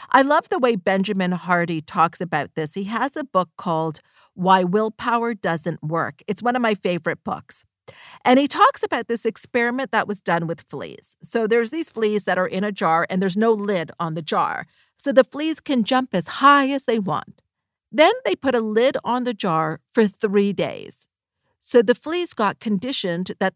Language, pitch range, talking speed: English, 180-240 Hz, 200 wpm